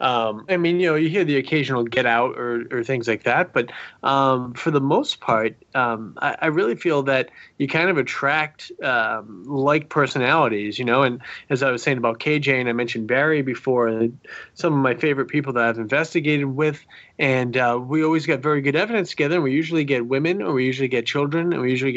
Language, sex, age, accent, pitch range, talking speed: English, male, 30-49, American, 125-155 Hz, 220 wpm